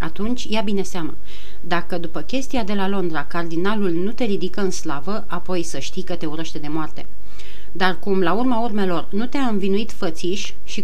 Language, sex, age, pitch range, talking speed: Romanian, female, 30-49, 175-215 Hz, 190 wpm